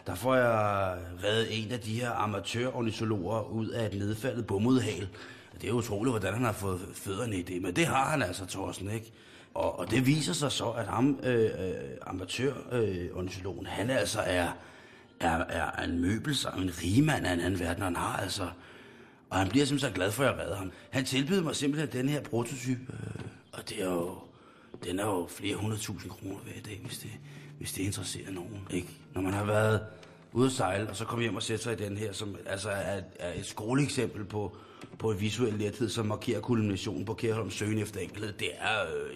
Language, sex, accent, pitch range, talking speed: Danish, male, native, 100-130 Hz, 215 wpm